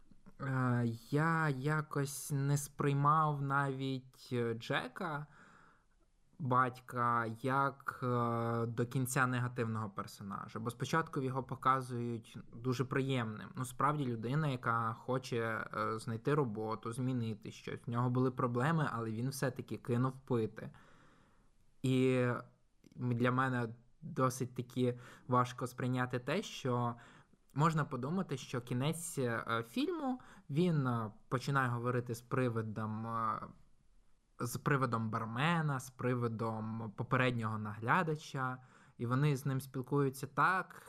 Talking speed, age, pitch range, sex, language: 100 wpm, 20-39, 120-140 Hz, male, Ukrainian